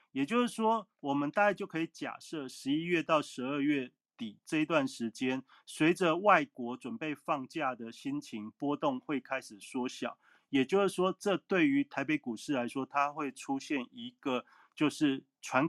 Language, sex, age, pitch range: Chinese, male, 30-49, 130-215 Hz